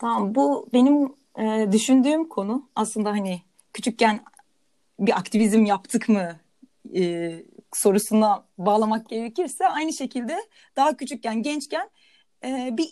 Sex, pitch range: female, 200-265 Hz